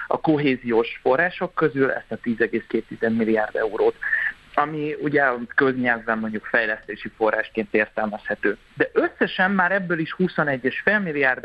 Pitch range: 125-165 Hz